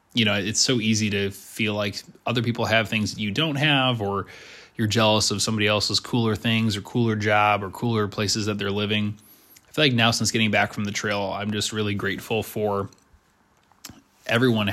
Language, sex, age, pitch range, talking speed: English, male, 20-39, 100-115 Hz, 200 wpm